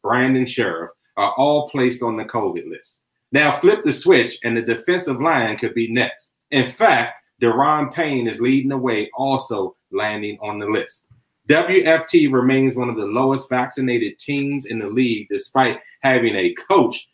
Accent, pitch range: American, 115-150 Hz